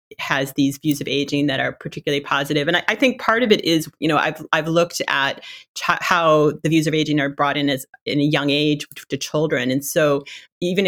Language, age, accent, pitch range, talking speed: English, 30-49, American, 145-165 Hz, 230 wpm